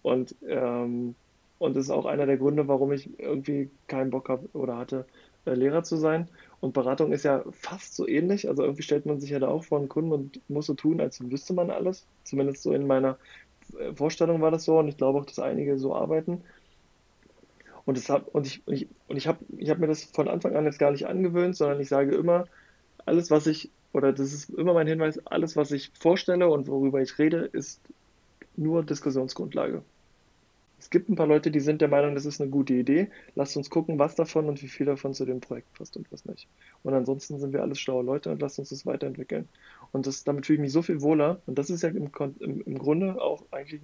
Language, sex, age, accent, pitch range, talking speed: German, male, 20-39, German, 135-160 Hz, 230 wpm